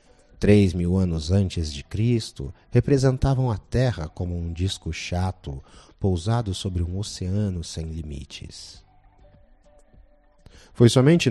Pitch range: 85-125 Hz